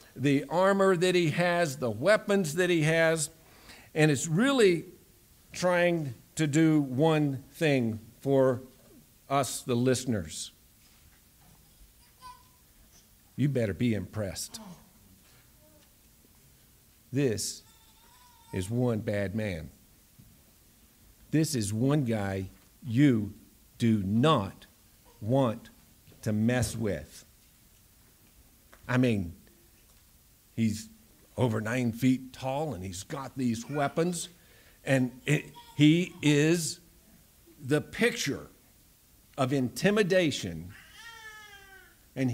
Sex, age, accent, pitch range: male, 50-69, American, 110-160 Hz